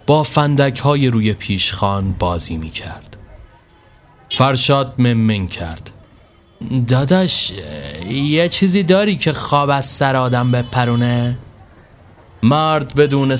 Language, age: Persian, 30-49